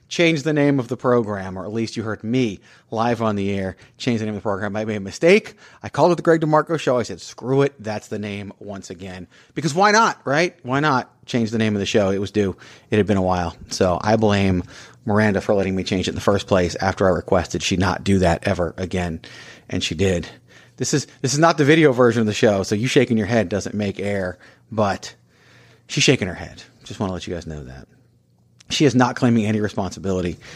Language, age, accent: English, 30-49, American